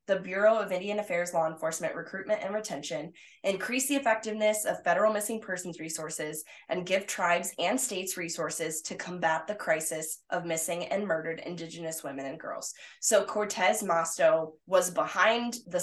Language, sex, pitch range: English, female, 165-195 Hz